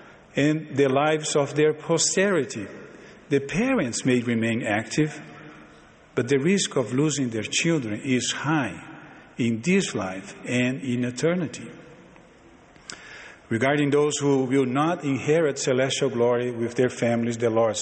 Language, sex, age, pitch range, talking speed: English, male, 50-69, 120-150 Hz, 130 wpm